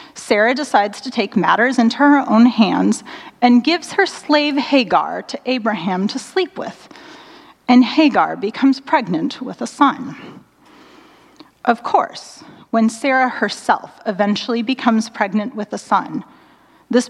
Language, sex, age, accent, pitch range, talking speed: English, female, 30-49, American, 215-295 Hz, 135 wpm